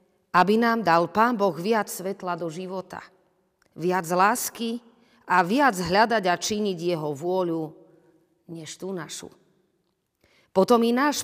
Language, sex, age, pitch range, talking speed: Slovak, female, 40-59, 170-210 Hz, 130 wpm